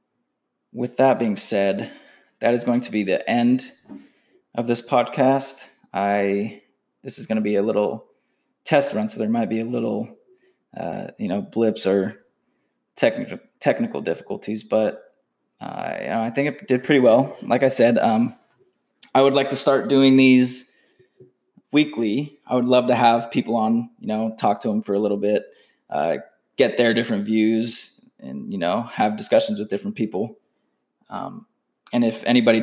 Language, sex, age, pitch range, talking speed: English, male, 20-39, 110-140 Hz, 170 wpm